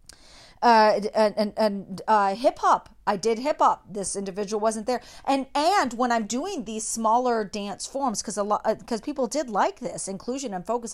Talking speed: 195 wpm